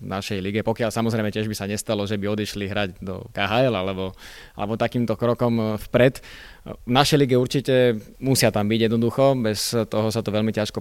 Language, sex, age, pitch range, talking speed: Slovak, male, 20-39, 105-125 Hz, 185 wpm